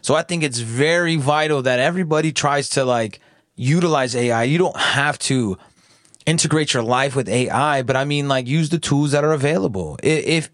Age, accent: 20-39, American